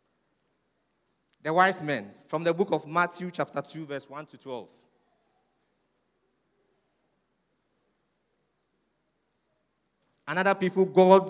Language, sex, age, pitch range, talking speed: English, male, 50-69, 150-195 Hz, 90 wpm